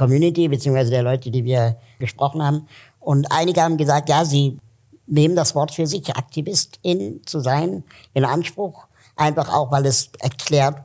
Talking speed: 165 wpm